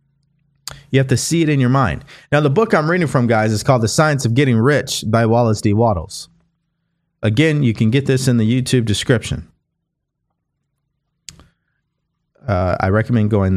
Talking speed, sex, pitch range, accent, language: 175 wpm, male, 105-135 Hz, American, English